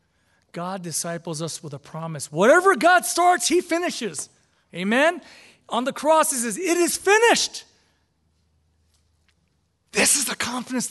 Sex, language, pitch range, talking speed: male, English, 185-310 Hz, 130 wpm